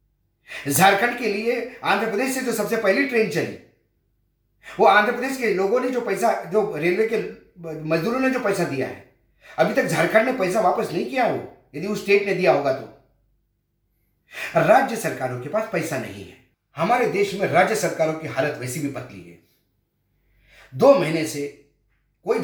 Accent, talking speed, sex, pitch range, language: native, 175 wpm, male, 145-215 Hz, Hindi